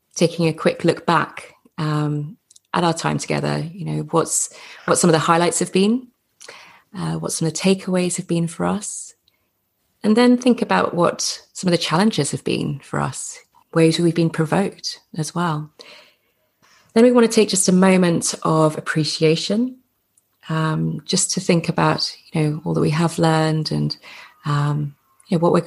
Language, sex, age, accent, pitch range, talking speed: English, female, 30-49, British, 155-195 Hz, 180 wpm